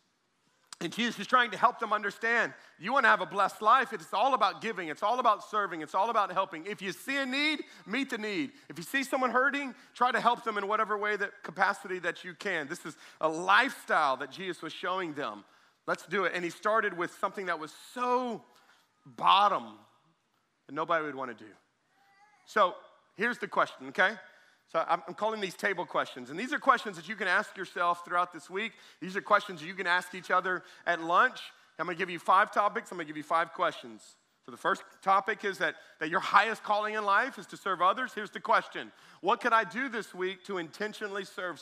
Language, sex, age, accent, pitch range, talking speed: English, male, 40-59, American, 170-225 Hz, 220 wpm